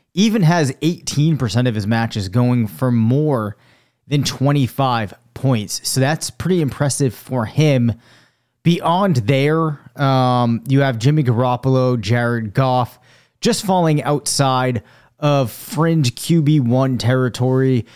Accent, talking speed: American, 115 wpm